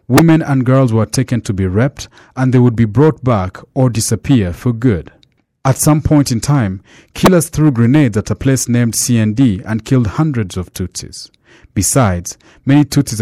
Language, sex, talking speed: English, male, 175 wpm